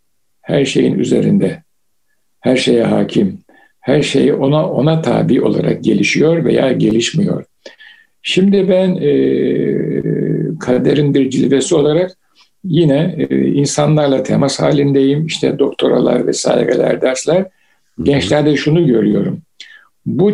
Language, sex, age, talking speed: Turkish, male, 60-79, 100 wpm